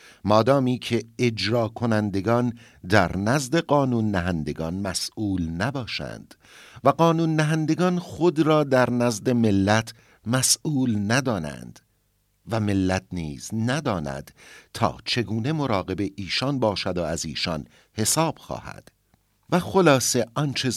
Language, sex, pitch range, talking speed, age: Persian, male, 95-135 Hz, 105 wpm, 50-69